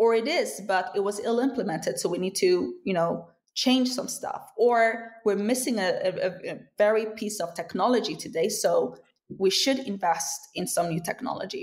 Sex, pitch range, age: female, 185-250 Hz, 20-39